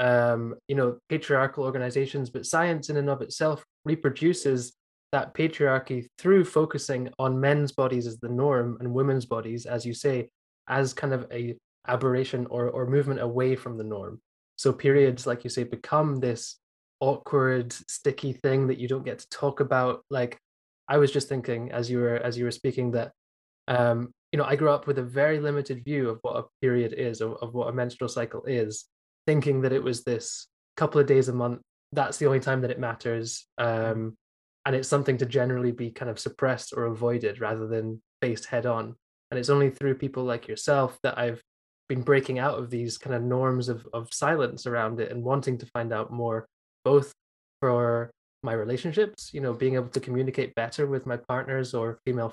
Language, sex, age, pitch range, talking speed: English, male, 20-39, 120-140 Hz, 195 wpm